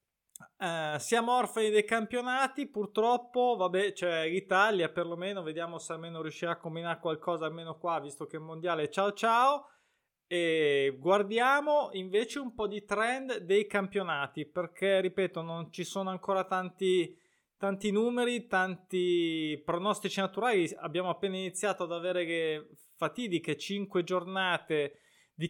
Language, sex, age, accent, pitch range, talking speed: Italian, male, 20-39, native, 165-205 Hz, 130 wpm